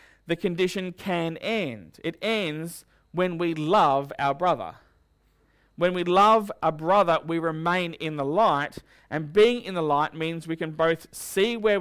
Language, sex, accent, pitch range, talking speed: English, male, Australian, 145-180 Hz, 165 wpm